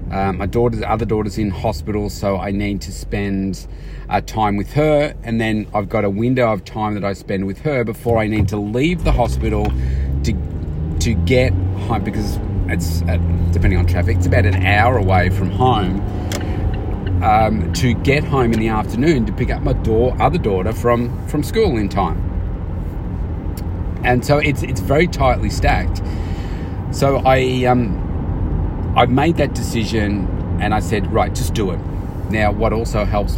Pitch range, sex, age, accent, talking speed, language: 90-110 Hz, male, 30-49, Australian, 175 wpm, English